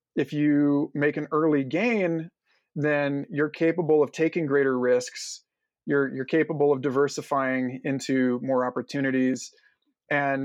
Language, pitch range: English, 130-155 Hz